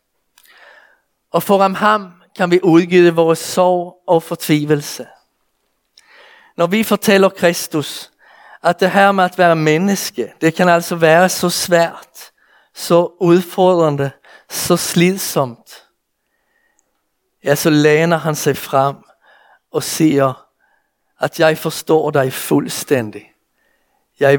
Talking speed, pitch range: 110 wpm, 140-175 Hz